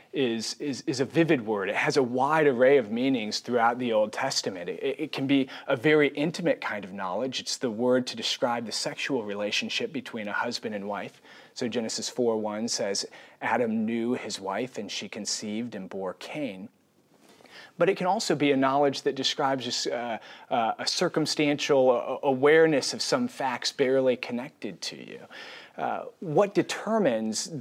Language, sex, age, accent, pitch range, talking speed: English, male, 30-49, American, 125-175 Hz, 165 wpm